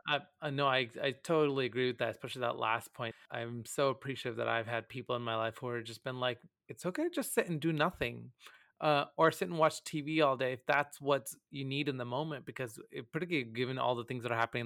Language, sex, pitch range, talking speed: English, male, 125-150 Hz, 250 wpm